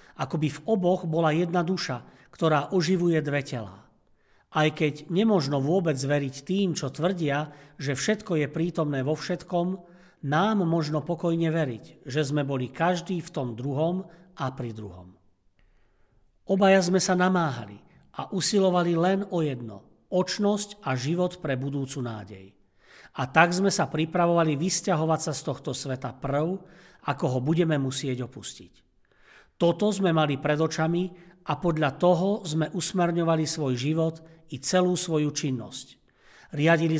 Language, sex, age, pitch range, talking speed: Slovak, male, 50-69, 135-175 Hz, 140 wpm